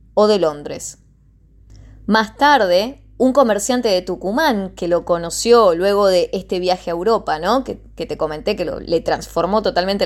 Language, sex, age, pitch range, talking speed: Spanish, female, 20-39, 175-235 Hz, 165 wpm